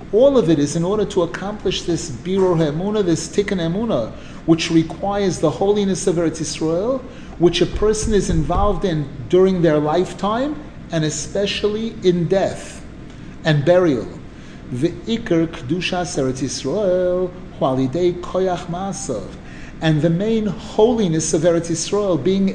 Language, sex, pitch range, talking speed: English, male, 165-210 Hz, 130 wpm